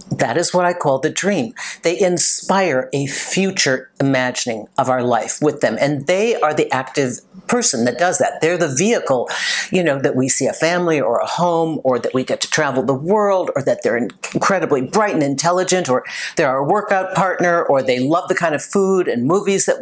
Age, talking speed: 50-69, 210 wpm